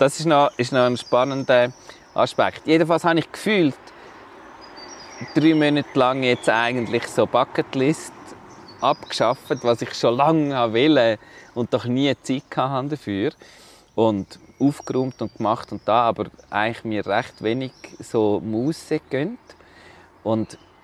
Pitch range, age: 110-140 Hz, 30-49